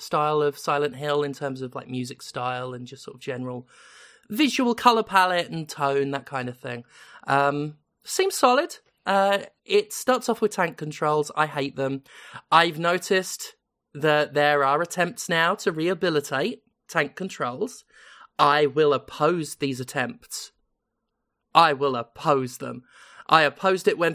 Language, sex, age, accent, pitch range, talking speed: English, male, 20-39, British, 140-200 Hz, 150 wpm